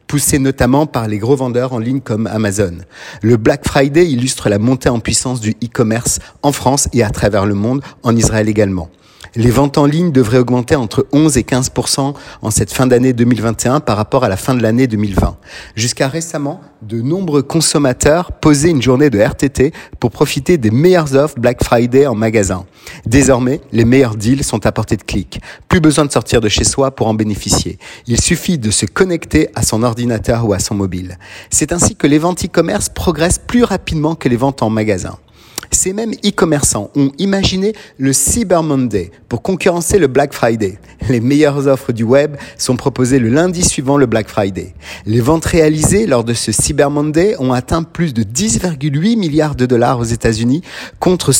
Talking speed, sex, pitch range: 190 wpm, male, 110-150 Hz